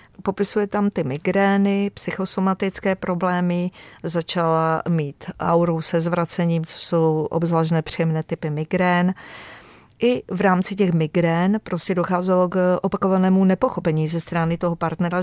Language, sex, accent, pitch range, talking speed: Czech, female, native, 165-190 Hz, 120 wpm